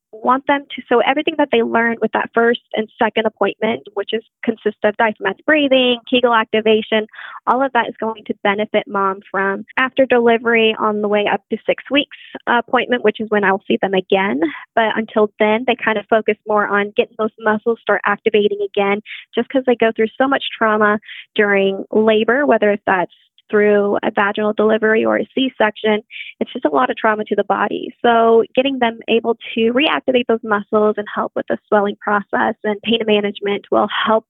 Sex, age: female, 10-29